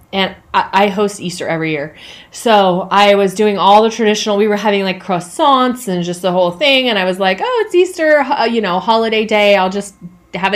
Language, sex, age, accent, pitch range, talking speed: English, female, 30-49, American, 180-230 Hz, 210 wpm